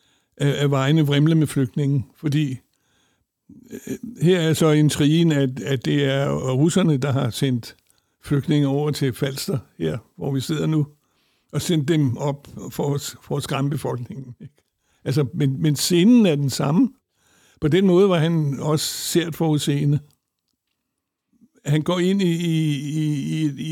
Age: 60-79